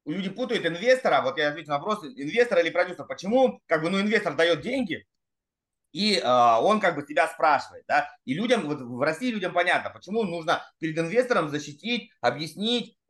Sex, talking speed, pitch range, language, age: male, 180 wpm, 155-235 Hz, Russian, 30-49